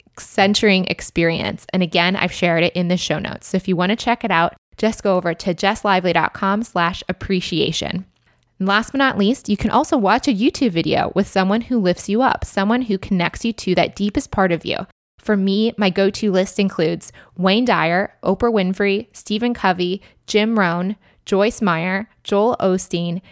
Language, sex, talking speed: English, female, 185 wpm